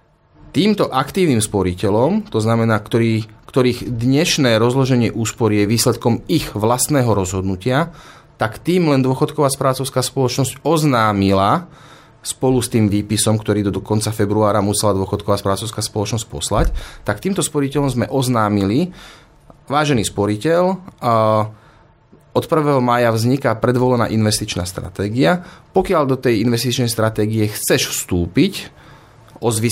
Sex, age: male, 30-49